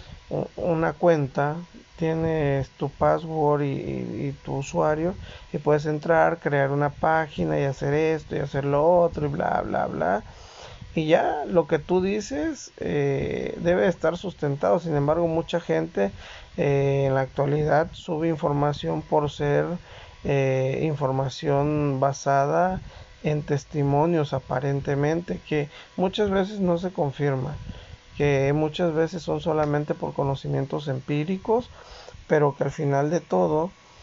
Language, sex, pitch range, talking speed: Spanish, male, 140-165 Hz, 130 wpm